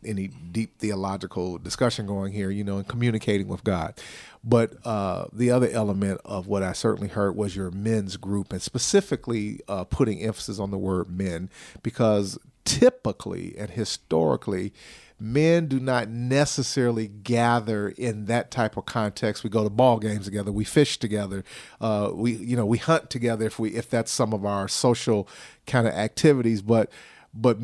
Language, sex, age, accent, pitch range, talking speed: English, male, 40-59, American, 105-130 Hz, 170 wpm